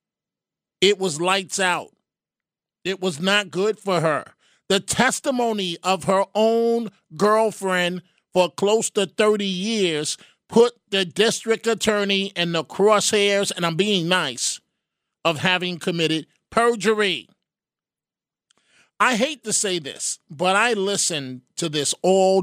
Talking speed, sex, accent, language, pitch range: 125 wpm, male, American, English, 180-230 Hz